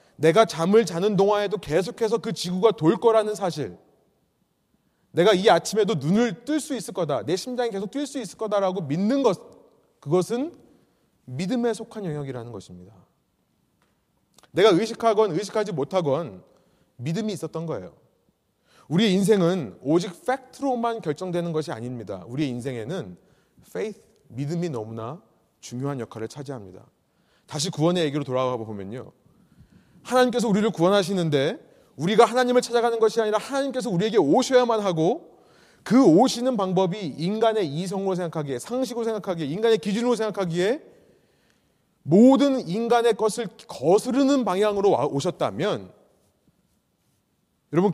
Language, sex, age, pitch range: Korean, male, 30-49, 150-225 Hz